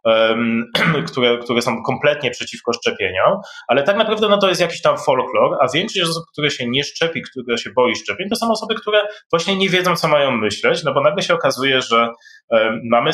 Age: 20-39